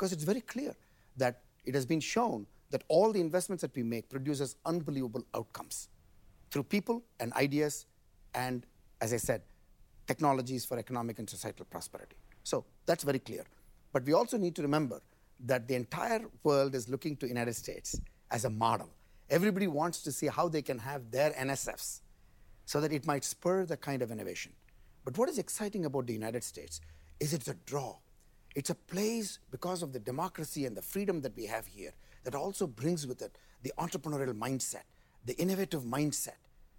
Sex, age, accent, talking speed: male, 50-69, Indian, 180 wpm